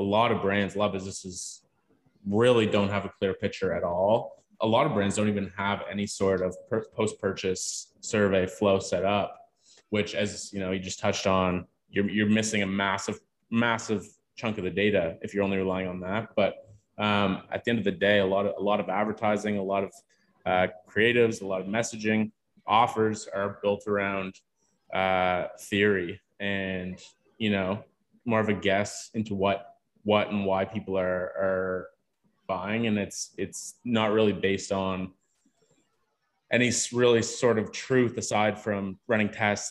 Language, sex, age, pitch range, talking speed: English, male, 20-39, 95-105 Hz, 180 wpm